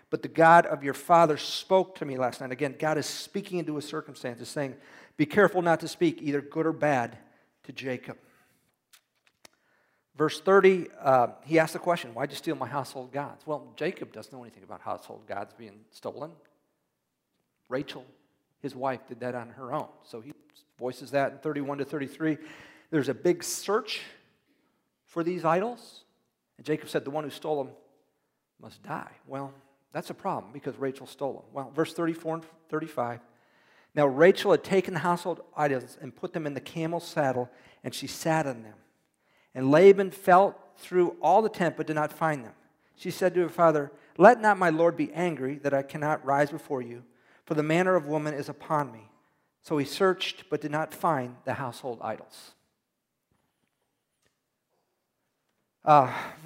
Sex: male